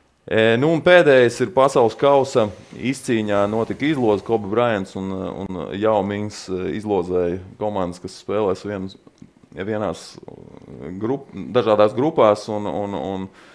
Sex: male